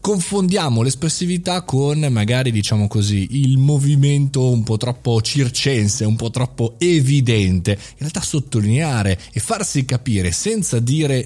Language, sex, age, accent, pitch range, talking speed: Italian, male, 30-49, native, 110-150 Hz, 130 wpm